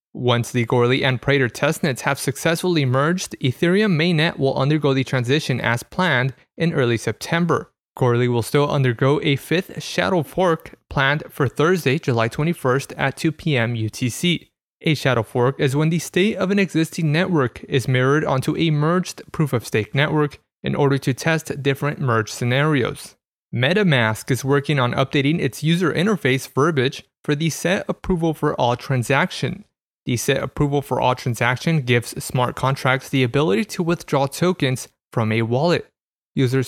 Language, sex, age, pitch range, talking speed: English, male, 30-49, 130-160 Hz, 160 wpm